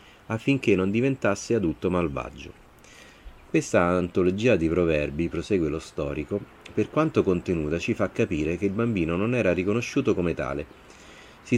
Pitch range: 80-105 Hz